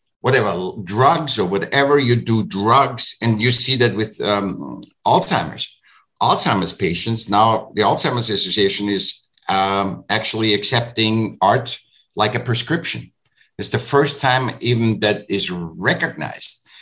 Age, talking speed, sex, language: 60-79, 130 wpm, male, English